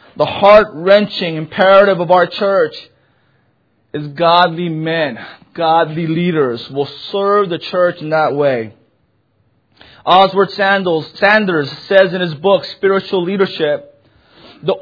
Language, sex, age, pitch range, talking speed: English, male, 30-49, 155-200 Hz, 110 wpm